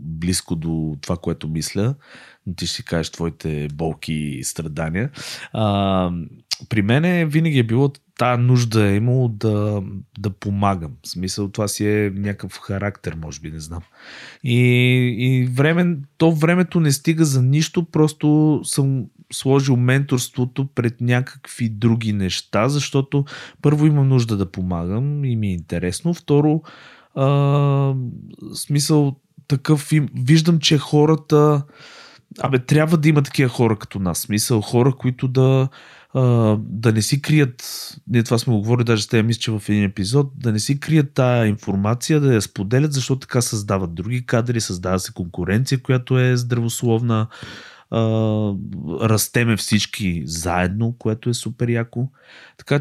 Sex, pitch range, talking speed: male, 100-140 Hz, 145 wpm